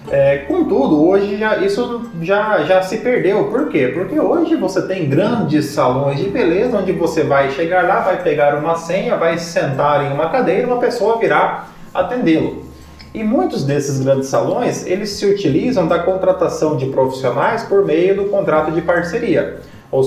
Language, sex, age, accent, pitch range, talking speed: Portuguese, male, 30-49, Brazilian, 130-195 Hz, 165 wpm